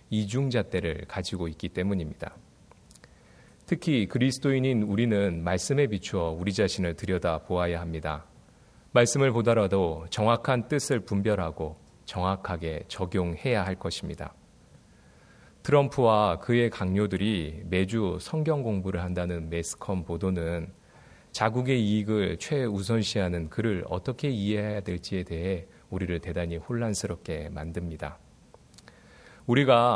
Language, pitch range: Korean, 85-115 Hz